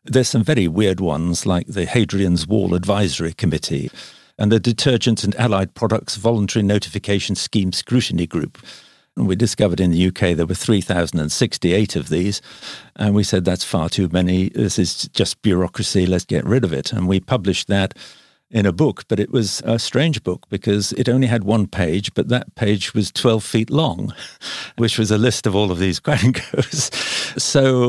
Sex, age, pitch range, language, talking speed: male, 50-69, 95-120 Hz, English, 185 wpm